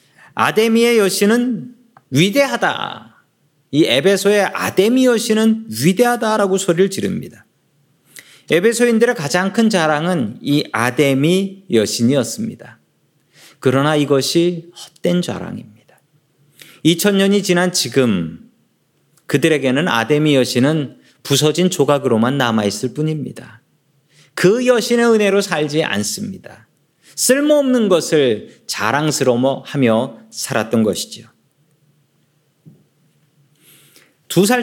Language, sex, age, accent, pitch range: Korean, male, 40-59, native, 145-200 Hz